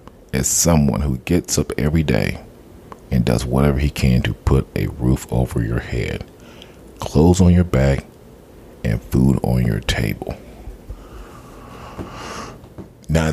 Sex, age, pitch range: male, 40-59, 65-90 Hz